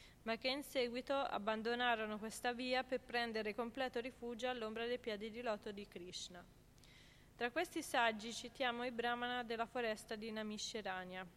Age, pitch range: 20-39, 220-255 Hz